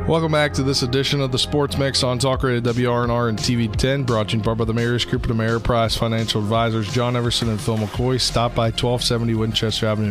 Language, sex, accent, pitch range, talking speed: English, male, American, 110-130 Hz, 235 wpm